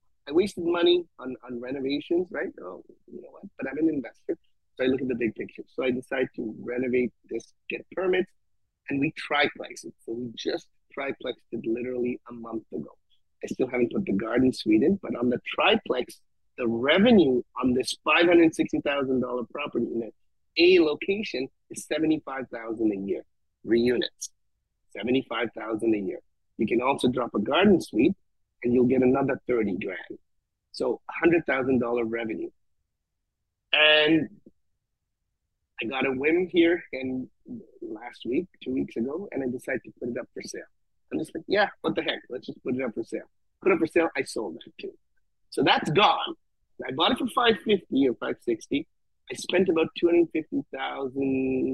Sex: male